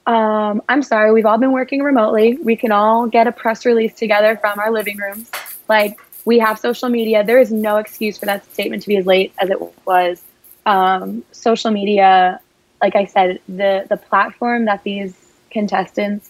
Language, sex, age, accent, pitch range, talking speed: English, female, 20-39, American, 200-235 Hz, 190 wpm